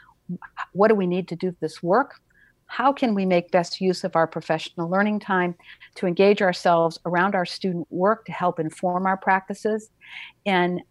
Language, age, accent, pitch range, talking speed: English, 50-69, American, 165-190 Hz, 175 wpm